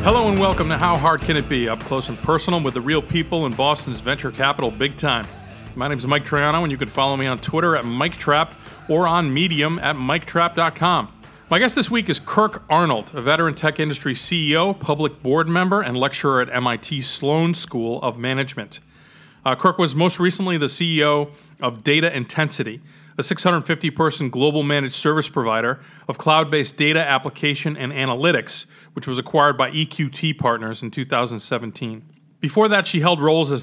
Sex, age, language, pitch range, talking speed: male, 40-59, English, 135-165 Hz, 180 wpm